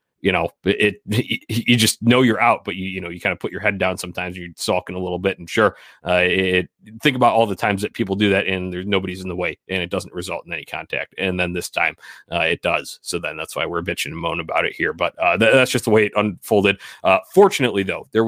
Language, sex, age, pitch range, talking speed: English, male, 30-49, 95-115 Hz, 270 wpm